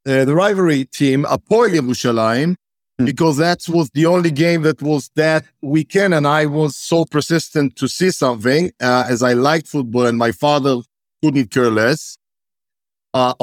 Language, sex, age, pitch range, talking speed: English, male, 50-69, 140-180 Hz, 160 wpm